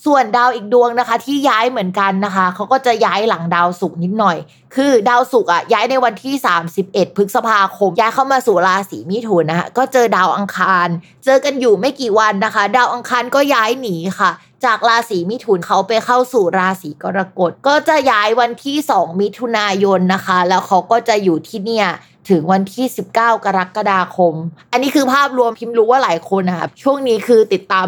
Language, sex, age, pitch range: Thai, female, 20-39, 185-245 Hz